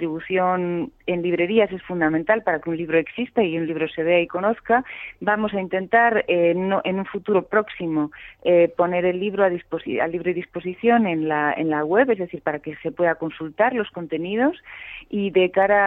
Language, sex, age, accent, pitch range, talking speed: Spanish, female, 30-49, Spanish, 170-200 Hz, 185 wpm